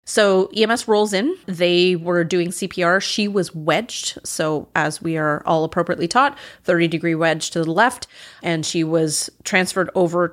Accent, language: American, English